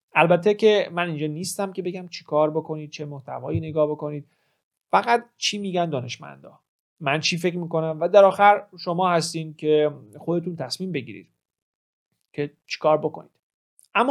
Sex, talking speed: male, 155 wpm